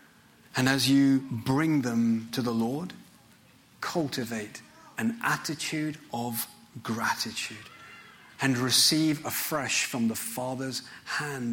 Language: English